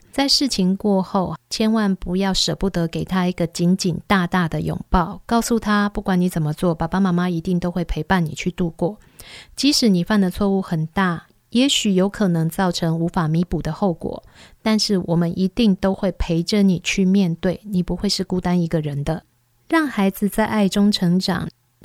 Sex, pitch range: female, 170-205 Hz